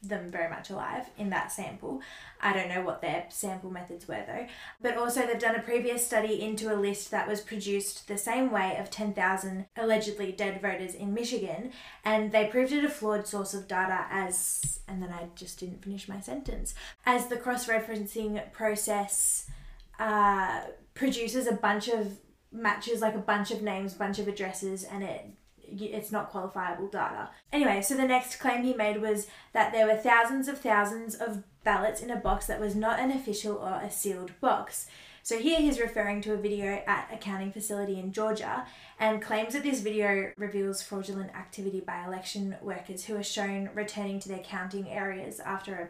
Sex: female